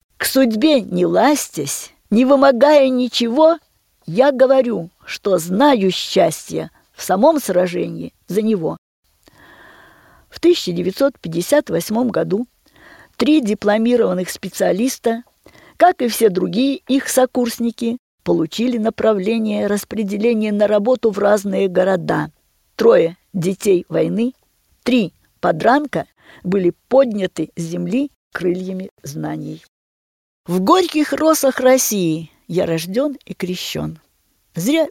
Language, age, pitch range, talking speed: Russian, 50-69, 175-255 Hz, 100 wpm